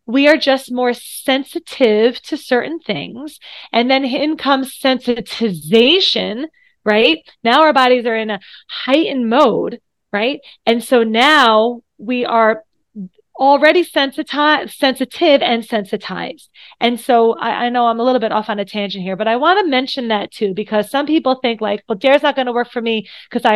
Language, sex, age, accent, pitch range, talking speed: English, female, 30-49, American, 220-290 Hz, 175 wpm